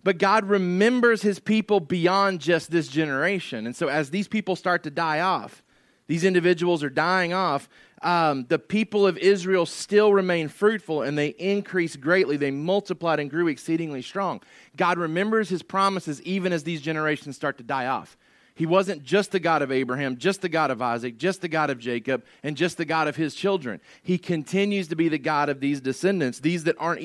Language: English